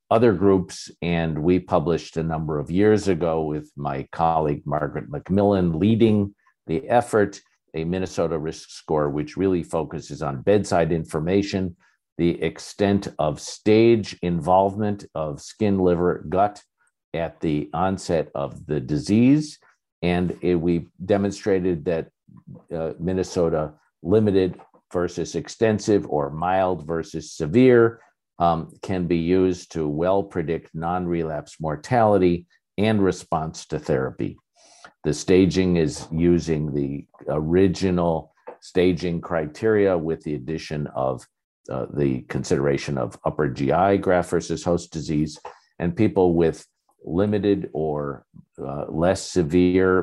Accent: American